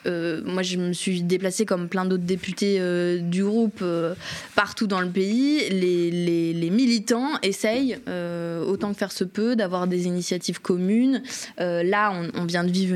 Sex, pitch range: female, 180-225 Hz